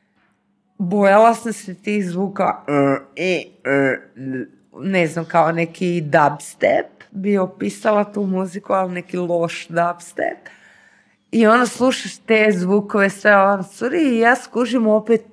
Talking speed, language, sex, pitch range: 115 wpm, Croatian, female, 180-215 Hz